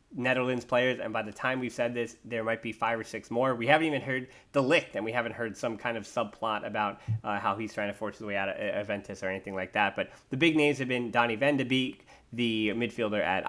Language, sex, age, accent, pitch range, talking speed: English, male, 20-39, American, 110-135 Hz, 255 wpm